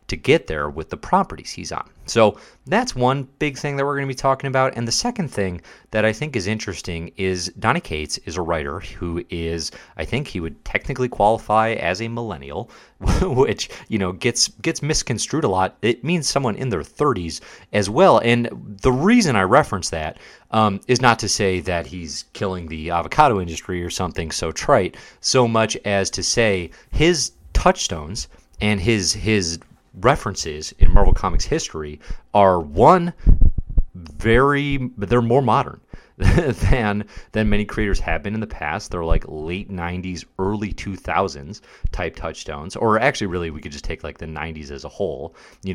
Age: 30-49